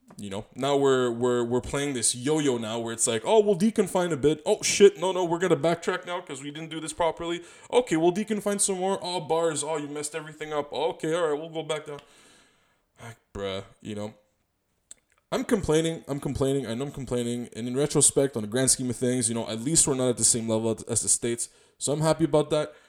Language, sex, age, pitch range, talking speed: English, male, 20-39, 120-160 Hz, 240 wpm